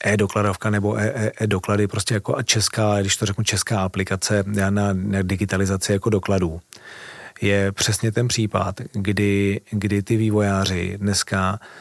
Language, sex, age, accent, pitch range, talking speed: Czech, male, 40-59, native, 100-115 Hz, 120 wpm